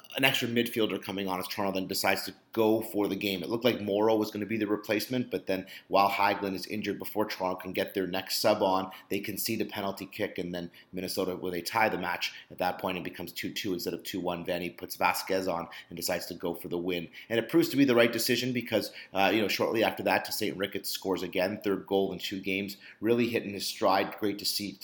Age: 30-49